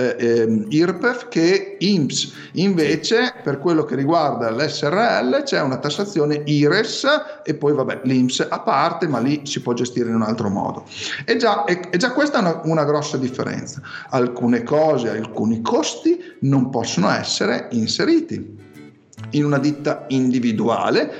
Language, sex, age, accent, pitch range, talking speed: Italian, male, 50-69, native, 135-195 Hz, 140 wpm